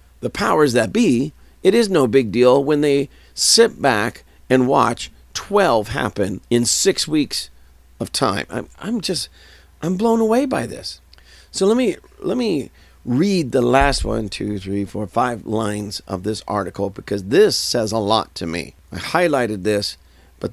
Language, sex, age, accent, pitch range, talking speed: English, male, 50-69, American, 90-145 Hz, 170 wpm